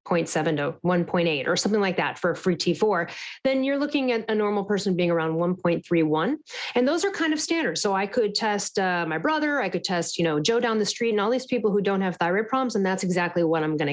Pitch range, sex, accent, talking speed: 185-260 Hz, female, American, 245 wpm